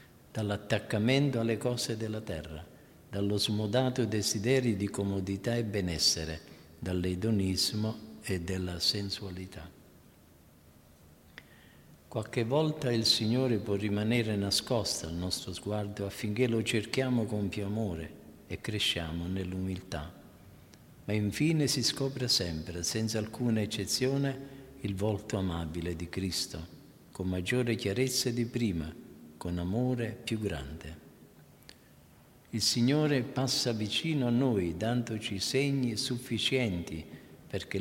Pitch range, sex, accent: 90-125 Hz, male, native